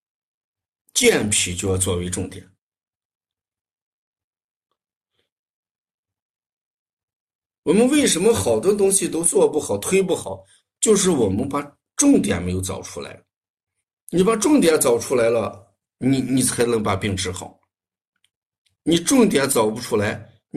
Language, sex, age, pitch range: Chinese, male, 50-69, 95-140 Hz